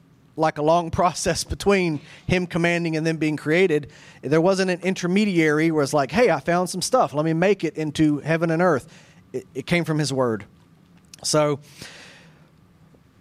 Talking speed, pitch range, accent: 175 wpm, 150-180 Hz, American